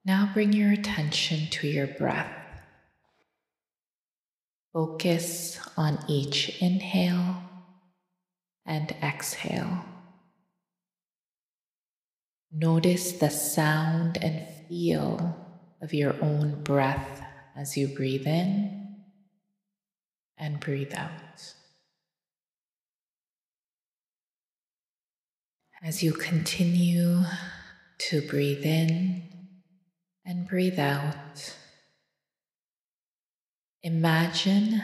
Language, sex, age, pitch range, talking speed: English, female, 20-39, 145-180 Hz, 65 wpm